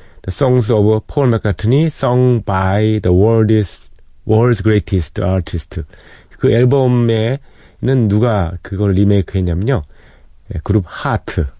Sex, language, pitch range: male, Korean, 90-125 Hz